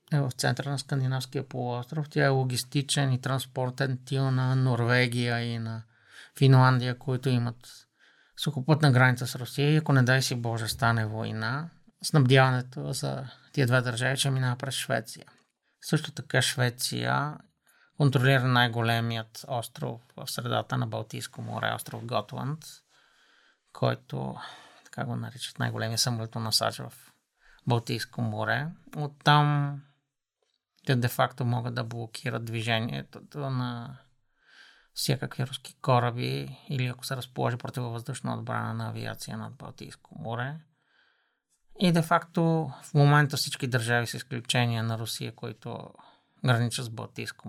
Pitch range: 120-140 Hz